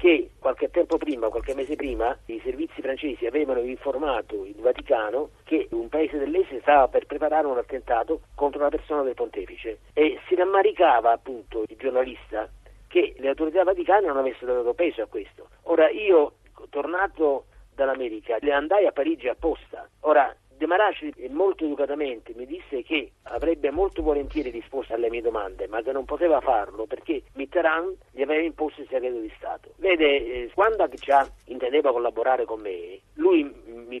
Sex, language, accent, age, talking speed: male, Italian, native, 40-59, 160 wpm